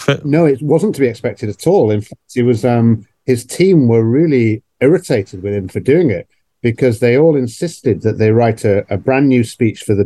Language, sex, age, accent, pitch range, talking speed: English, male, 50-69, British, 110-155 Hz, 220 wpm